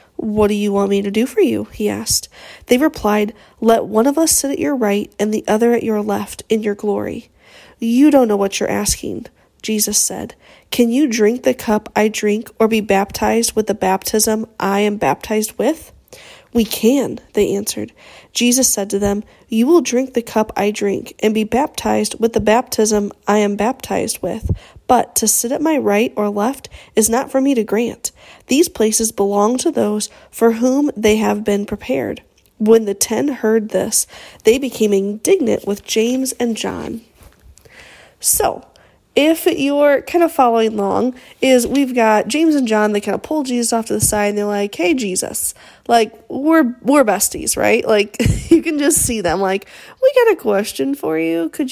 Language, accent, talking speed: English, American, 190 wpm